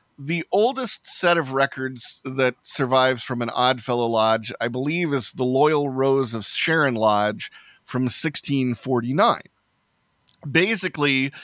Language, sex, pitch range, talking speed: English, male, 120-145 Hz, 120 wpm